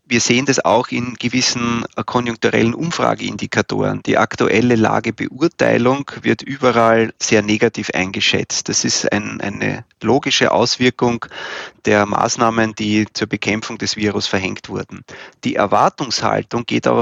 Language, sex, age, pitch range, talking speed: German, male, 30-49, 105-125 Hz, 120 wpm